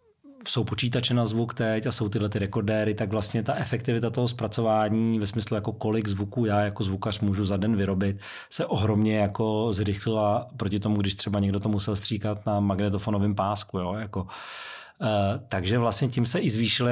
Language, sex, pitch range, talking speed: Czech, male, 105-120 Hz, 180 wpm